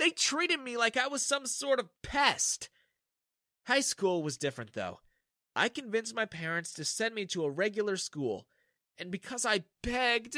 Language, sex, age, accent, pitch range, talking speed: English, male, 30-49, American, 170-270 Hz, 175 wpm